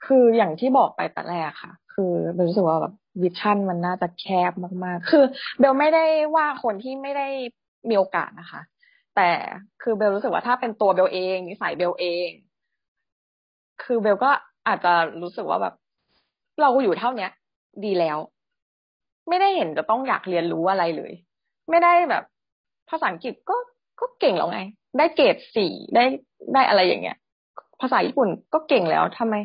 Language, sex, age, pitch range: Thai, female, 20-39, 180-270 Hz